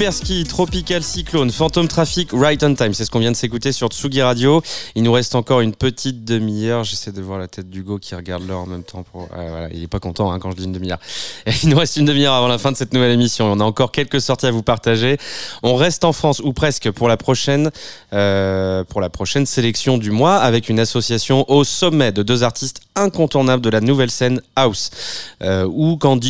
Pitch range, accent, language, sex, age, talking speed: 105-140 Hz, French, French, male, 20-39, 235 wpm